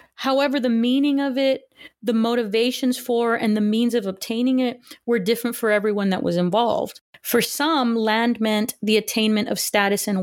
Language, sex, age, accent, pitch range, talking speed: English, female, 30-49, American, 210-245 Hz, 175 wpm